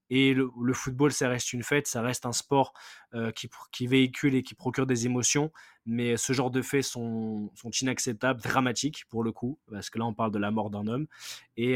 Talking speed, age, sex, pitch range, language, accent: 225 wpm, 20-39, male, 110-130 Hz, French, French